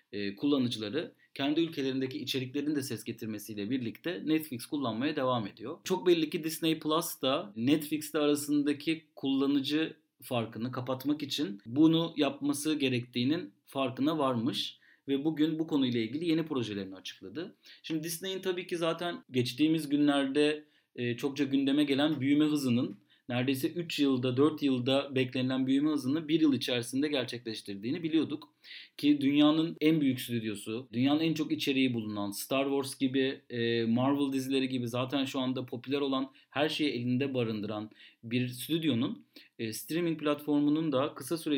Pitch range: 125-150 Hz